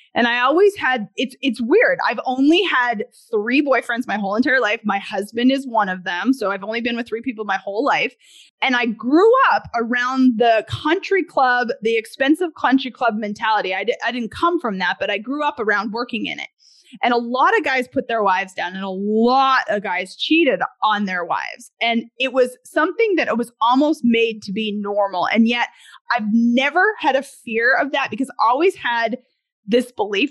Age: 20-39